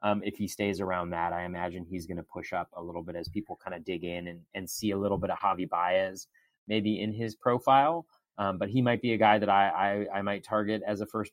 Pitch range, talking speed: 100-120 Hz, 270 wpm